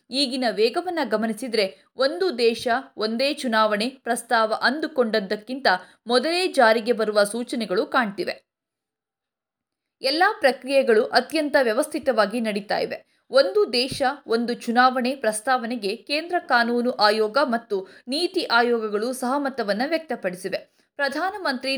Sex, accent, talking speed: female, native, 95 wpm